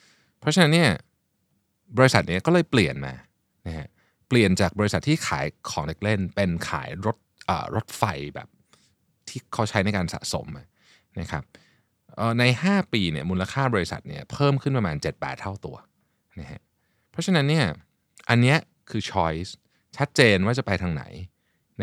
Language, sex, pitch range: Thai, male, 90-125 Hz